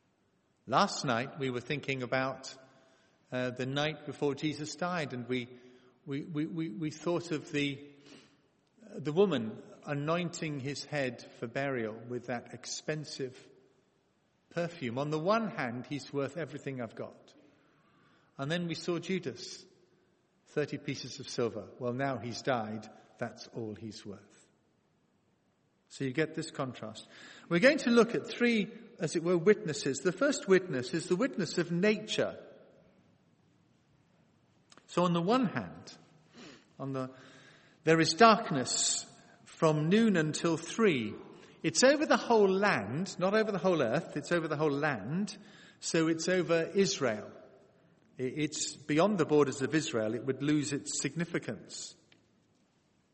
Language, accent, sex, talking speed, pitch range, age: English, British, male, 140 wpm, 130-180 Hz, 50-69